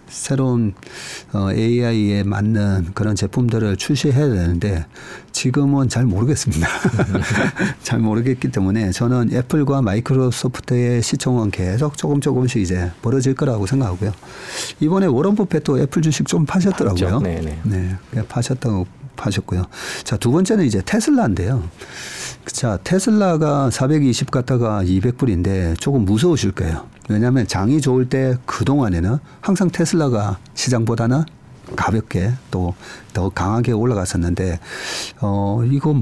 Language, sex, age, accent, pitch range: Korean, male, 40-59, native, 100-140 Hz